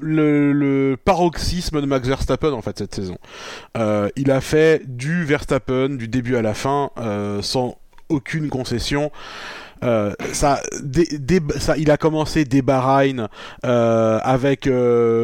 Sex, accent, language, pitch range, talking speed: male, French, French, 125-150 Hz, 150 wpm